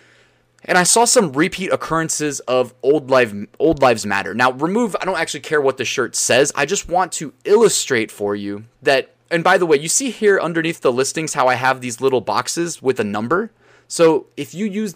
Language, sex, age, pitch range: English, male, 20-39, 120-155 Hz